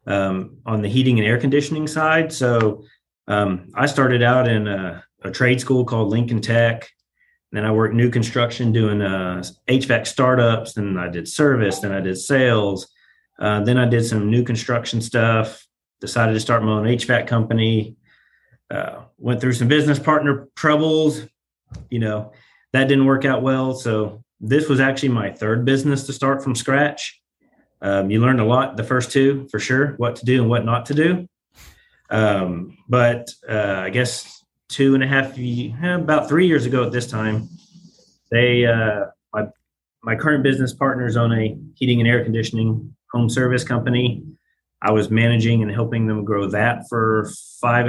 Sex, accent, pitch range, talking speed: male, American, 110-130 Hz, 175 wpm